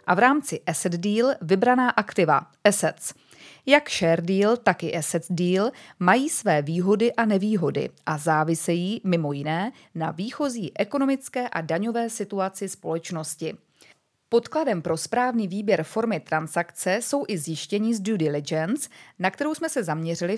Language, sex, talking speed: Czech, female, 140 wpm